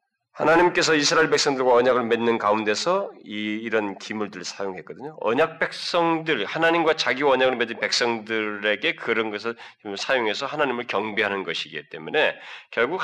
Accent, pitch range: native, 110-165 Hz